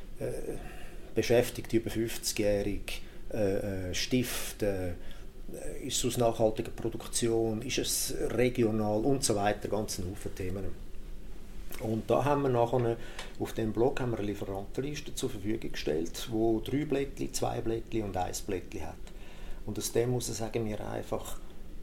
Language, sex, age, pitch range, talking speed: English, male, 40-59, 100-120 Hz, 135 wpm